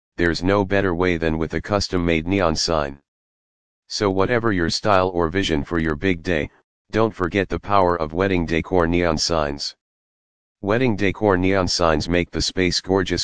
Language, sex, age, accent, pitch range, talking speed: English, male, 40-59, American, 80-95 Hz, 170 wpm